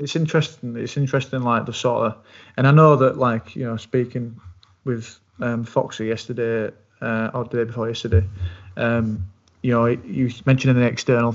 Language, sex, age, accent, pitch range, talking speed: English, male, 20-39, British, 115-130 Hz, 175 wpm